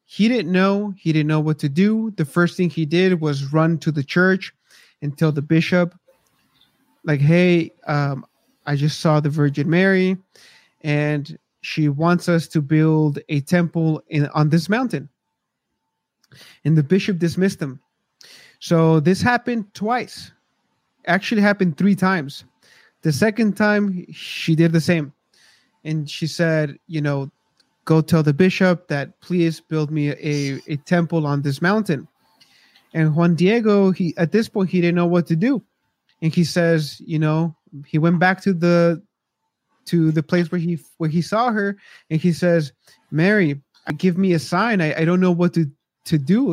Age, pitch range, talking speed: 30-49, 155-185 Hz, 170 wpm